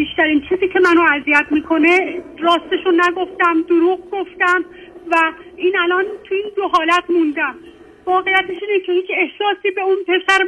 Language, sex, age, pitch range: Persian, female, 40-59, 315-380 Hz